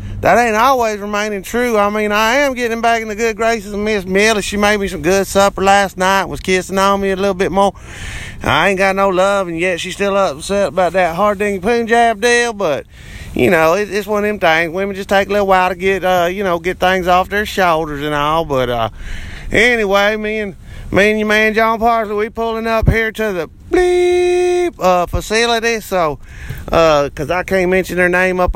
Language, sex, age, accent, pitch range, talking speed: English, male, 30-49, American, 180-220 Hz, 225 wpm